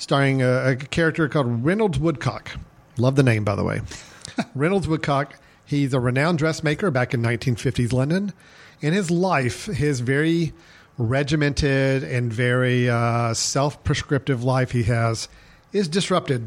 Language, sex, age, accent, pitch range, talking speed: English, male, 40-59, American, 125-155 Hz, 140 wpm